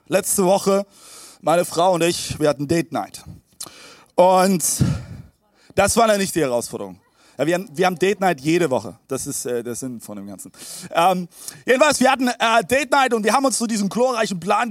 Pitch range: 165-210 Hz